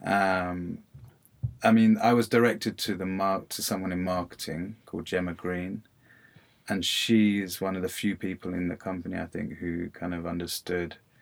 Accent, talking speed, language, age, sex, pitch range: British, 170 wpm, English, 30-49, male, 85-100 Hz